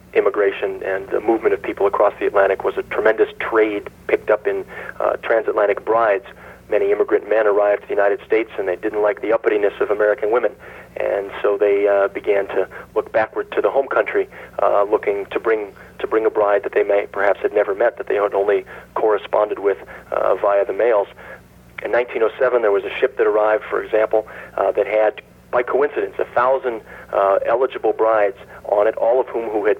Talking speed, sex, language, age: 200 wpm, male, English, 40-59